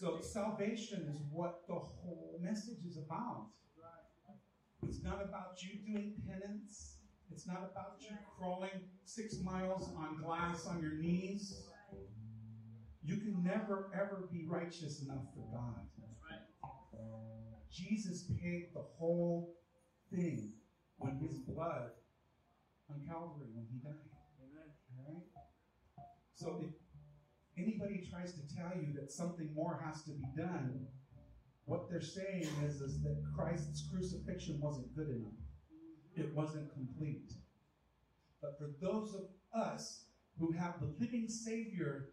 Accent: American